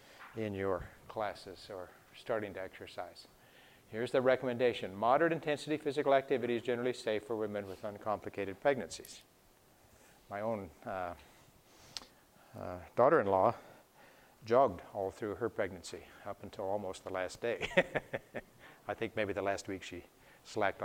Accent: American